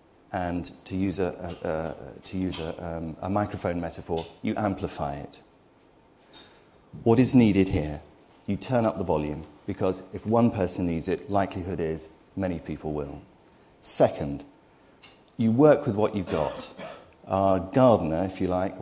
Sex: male